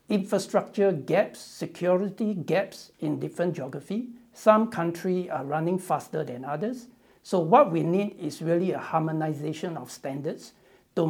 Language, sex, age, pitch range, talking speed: English, male, 60-79, 155-200 Hz, 135 wpm